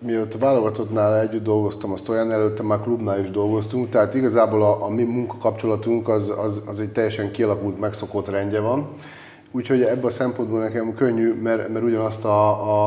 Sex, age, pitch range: male, 30-49, 105-120 Hz